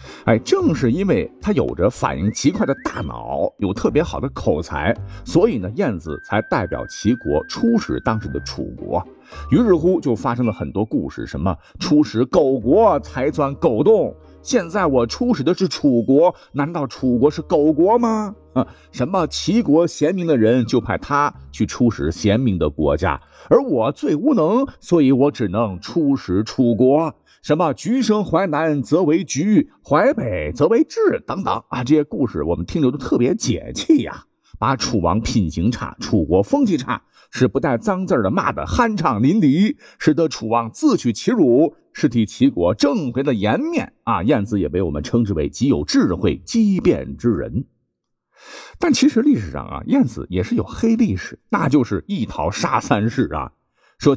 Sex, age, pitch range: male, 50-69, 110-175 Hz